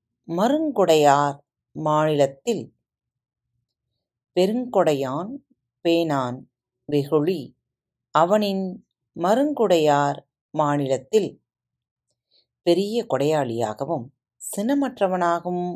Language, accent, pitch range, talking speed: Tamil, native, 125-185 Hz, 40 wpm